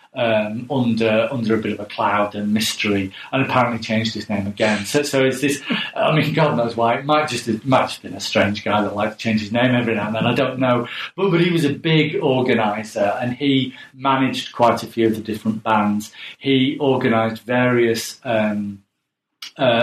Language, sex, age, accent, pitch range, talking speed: English, male, 40-59, British, 110-130 Hz, 205 wpm